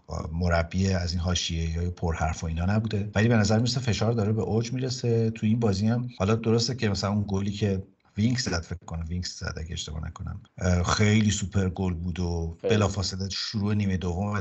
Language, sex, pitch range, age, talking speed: Persian, male, 90-110 Hz, 50-69, 205 wpm